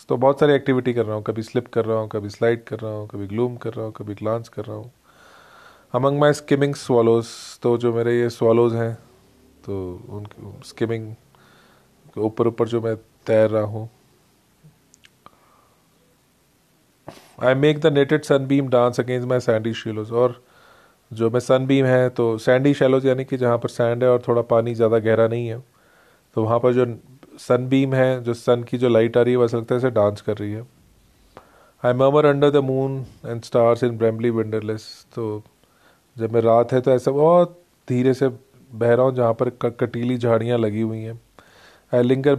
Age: 30-49